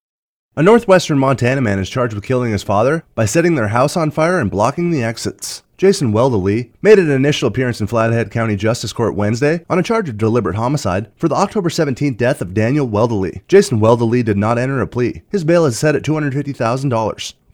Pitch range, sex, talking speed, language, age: 110-150 Hz, male, 200 wpm, English, 30-49